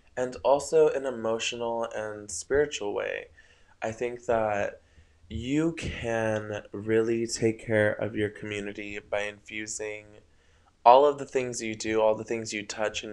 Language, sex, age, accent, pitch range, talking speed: English, male, 20-39, American, 105-120 Hz, 145 wpm